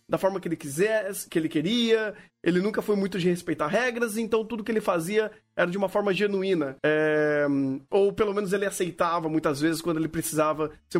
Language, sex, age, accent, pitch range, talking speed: Portuguese, male, 30-49, Brazilian, 185-240 Hz, 200 wpm